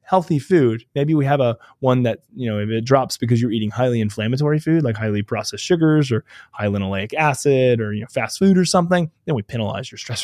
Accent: American